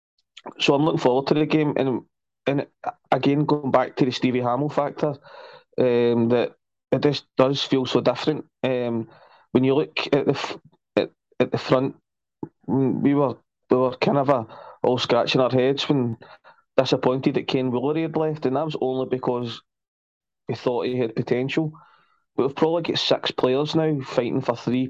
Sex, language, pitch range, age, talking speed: male, English, 125-145 Hz, 20-39, 180 wpm